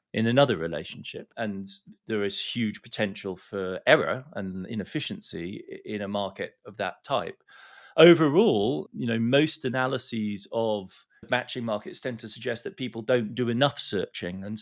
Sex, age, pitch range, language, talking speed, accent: male, 40-59, 110-135 Hz, English, 150 wpm, British